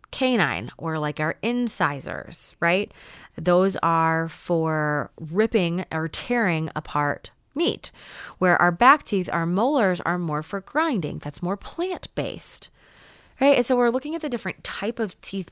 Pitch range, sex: 170-235 Hz, female